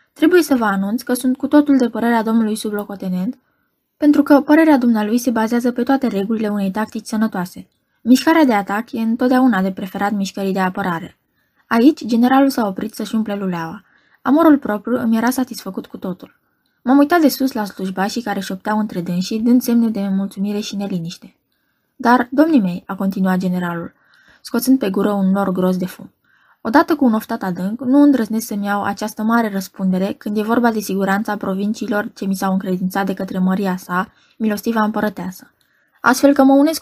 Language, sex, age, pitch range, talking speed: Romanian, female, 20-39, 195-250 Hz, 180 wpm